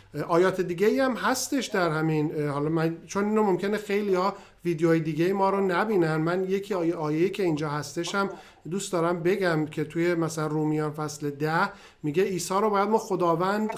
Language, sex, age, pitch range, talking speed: Persian, male, 50-69, 160-205 Hz, 185 wpm